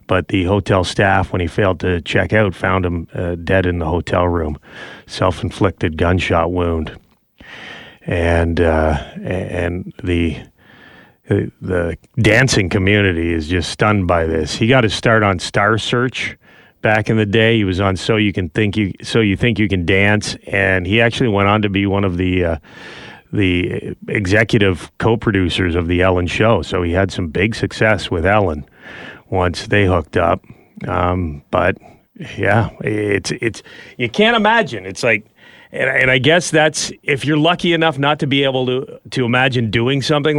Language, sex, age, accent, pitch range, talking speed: English, male, 30-49, American, 90-115 Hz, 170 wpm